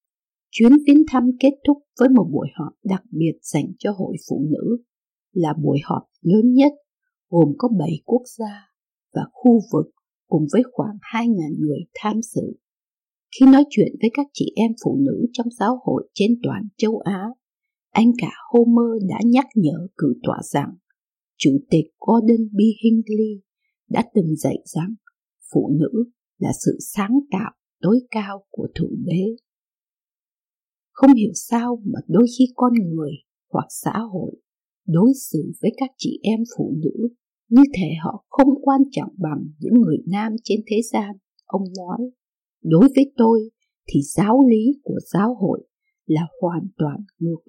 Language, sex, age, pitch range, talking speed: Vietnamese, female, 50-69, 195-250 Hz, 160 wpm